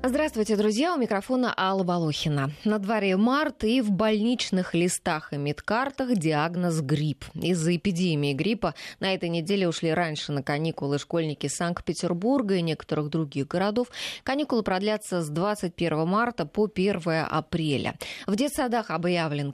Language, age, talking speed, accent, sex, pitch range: Russian, 20-39, 135 wpm, native, female, 165-215 Hz